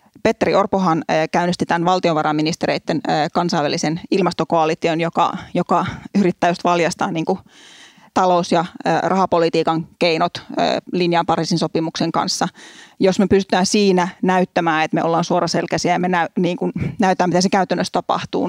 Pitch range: 165-190 Hz